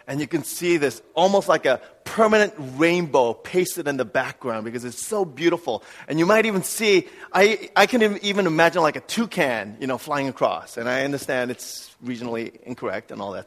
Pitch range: 155-205 Hz